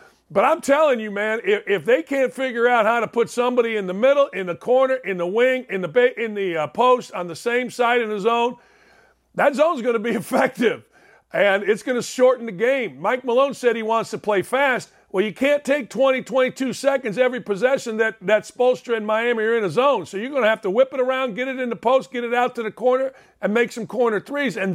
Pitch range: 200-255 Hz